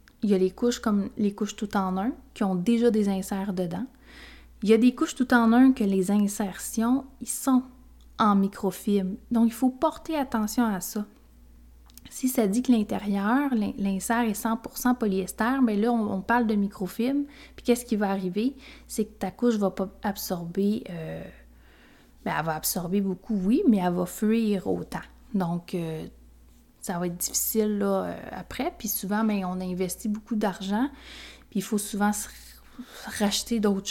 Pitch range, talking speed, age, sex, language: 190-235 Hz, 180 wpm, 30-49, female, French